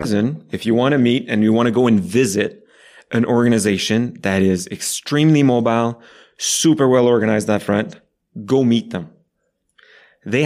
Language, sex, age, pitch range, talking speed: English, male, 30-49, 110-155 Hz, 155 wpm